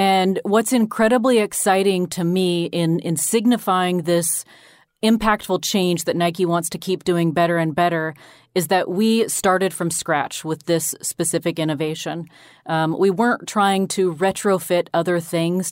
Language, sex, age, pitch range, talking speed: English, female, 30-49, 165-195 Hz, 150 wpm